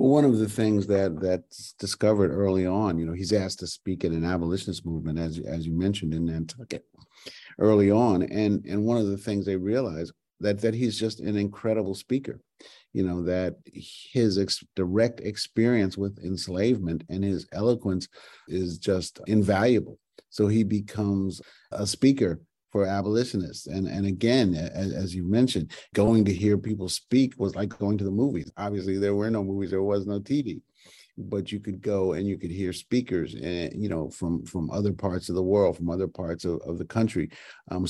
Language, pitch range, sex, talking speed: English, 85-105 Hz, male, 185 wpm